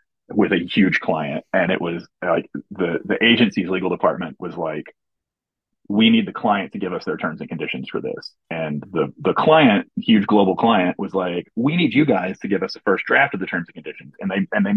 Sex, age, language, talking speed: male, 30-49, English, 230 wpm